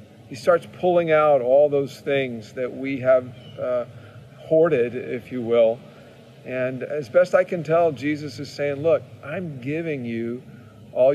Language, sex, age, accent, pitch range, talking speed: English, male, 50-69, American, 125-145 Hz, 155 wpm